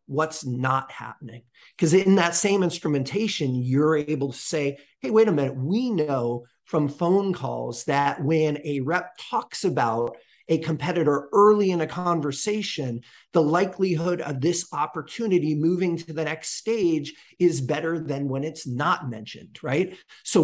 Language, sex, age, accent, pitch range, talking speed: English, male, 40-59, American, 140-180 Hz, 155 wpm